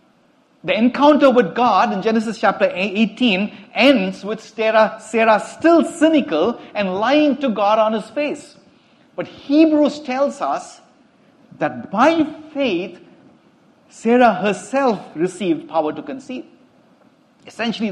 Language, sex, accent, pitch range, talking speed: English, male, Indian, 195-280 Hz, 115 wpm